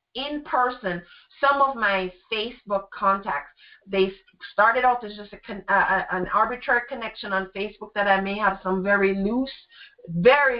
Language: English